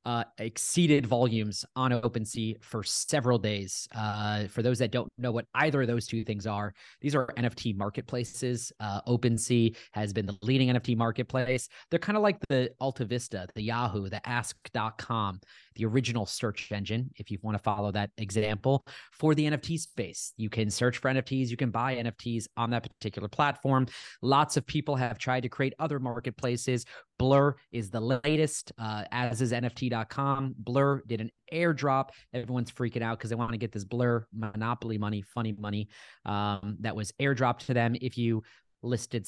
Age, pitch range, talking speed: 30-49, 110-130 Hz, 175 wpm